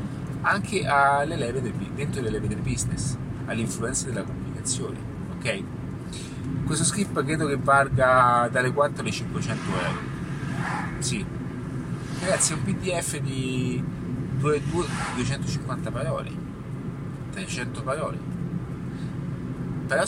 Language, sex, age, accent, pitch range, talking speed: Italian, male, 30-49, native, 130-150 Hz, 95 wpm